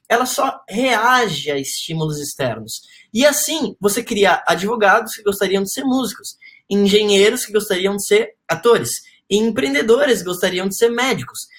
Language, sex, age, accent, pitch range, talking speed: Portuguese, male, 10-29, Brazilian, 200-245 Hz, 150 wpm